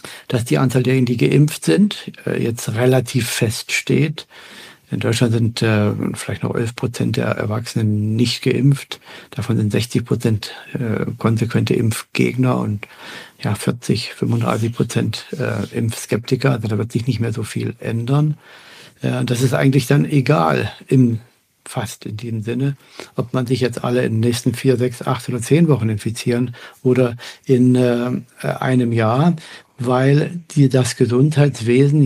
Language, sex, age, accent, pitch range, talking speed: German, male, 60-79, German, 115-135 Hz, 140 wpm